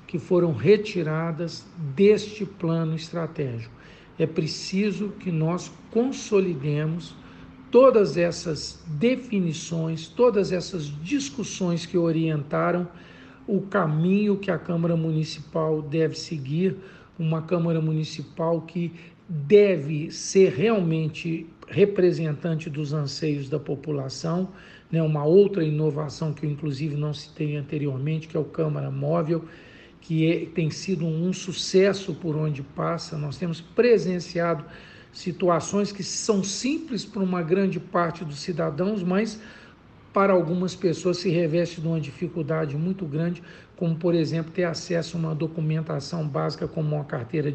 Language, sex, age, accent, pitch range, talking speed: Portuguese, male, 60-79, Brazilian, 155-180 Hz, 125 wpm